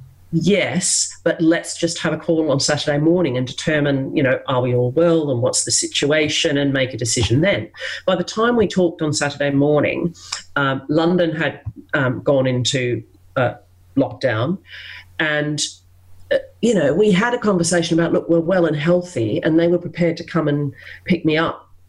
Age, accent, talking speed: 40-59, Australian, 185 wpm